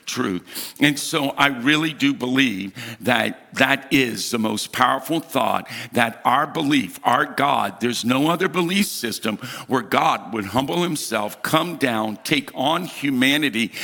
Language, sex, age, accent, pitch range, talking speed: English, male, 50-69, American, 130-170 Hz, 145 wpm